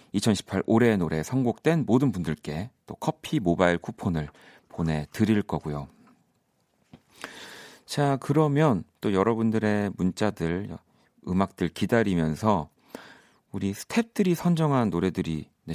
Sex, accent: male, native